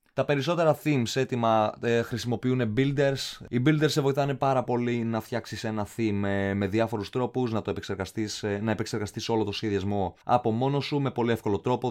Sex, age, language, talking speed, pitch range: male, 20-39, Greek, 185 wpm, 100-125 Hz